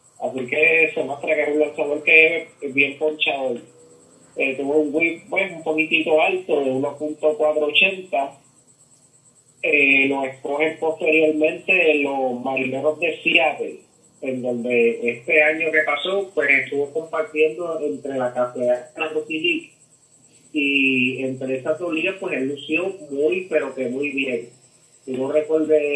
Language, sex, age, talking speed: English, male, 30-49, 130 wpm